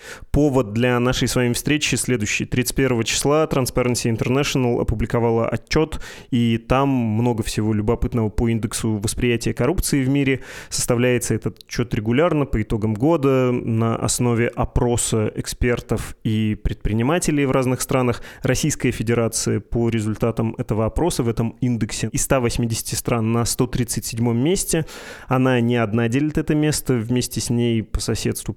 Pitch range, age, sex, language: 115-135 Hz, 20-39, male, Russian